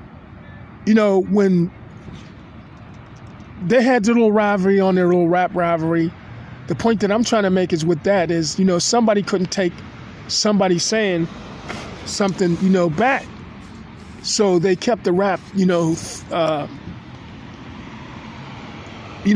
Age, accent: 20-39, American